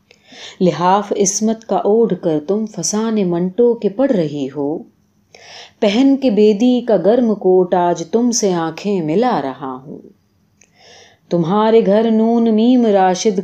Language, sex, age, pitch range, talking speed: Urdu, female, 30-49, 185-235 Hz, 135 wpm